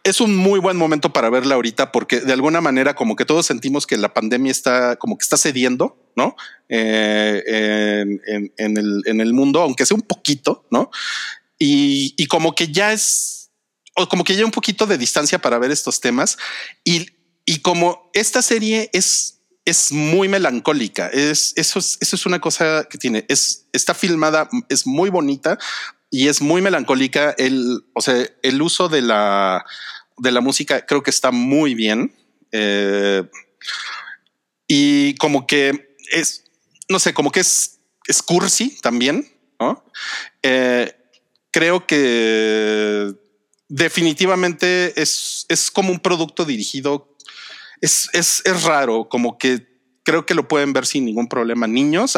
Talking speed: 160 wpm